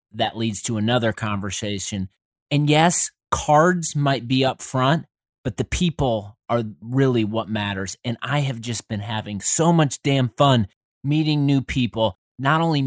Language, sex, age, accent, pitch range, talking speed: English, male, 30-49, American, 110-140 Hz, 160 wpm